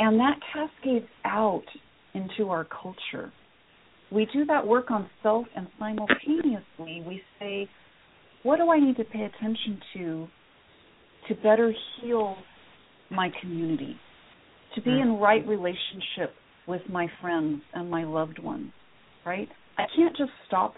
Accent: American